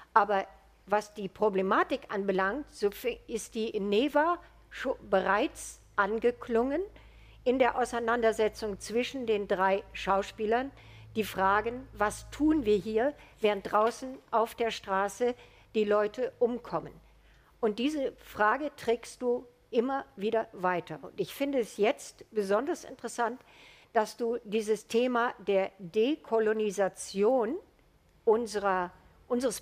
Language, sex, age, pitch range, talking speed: German, female, 50-69, 200-245 Hz, 115 wpm